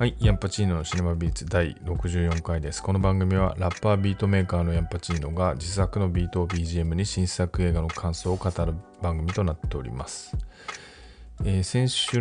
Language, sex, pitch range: Japanese, male, 85-100 Hz